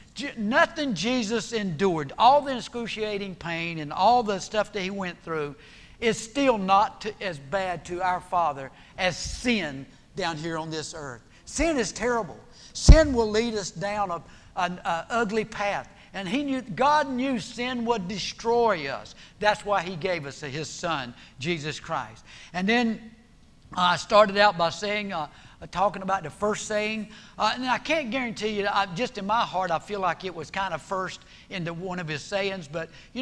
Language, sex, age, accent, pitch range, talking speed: English, male, 60-79, American, 170-220 Hz, 180 wpm